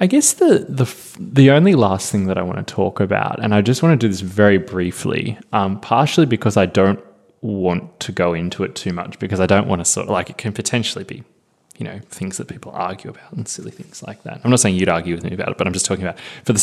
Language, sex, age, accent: English, male, 20-39, Australian